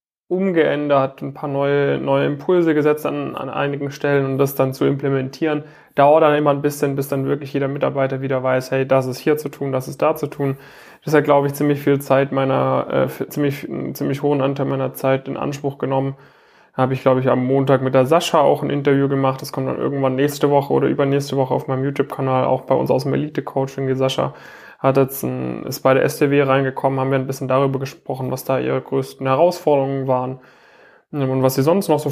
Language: German